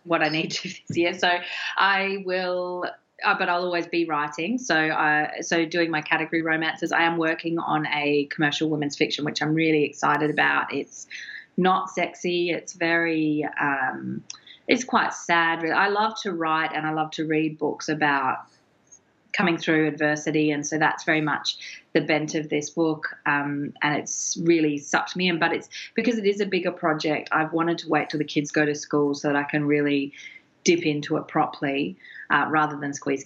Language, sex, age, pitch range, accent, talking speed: English, female, 30-49, 150-180 Hz, Australian, 190 wpm